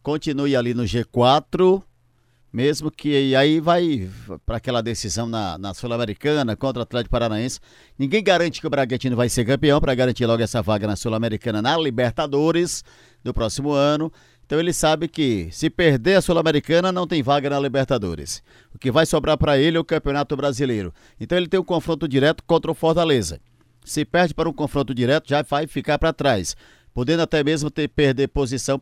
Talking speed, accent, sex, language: 180 wpm, Brazilian, male, Portuguese